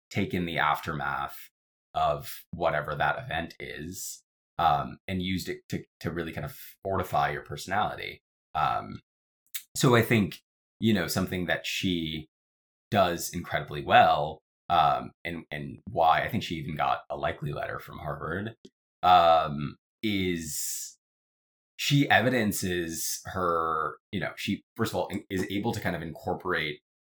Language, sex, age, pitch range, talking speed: English, male, 20-39, 75-100 Hz, 140 wpm